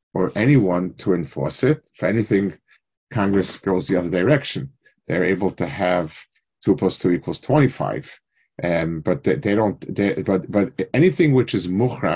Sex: male